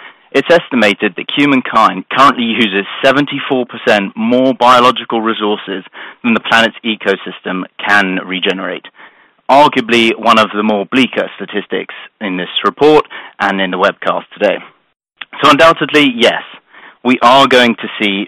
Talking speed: 130 wpm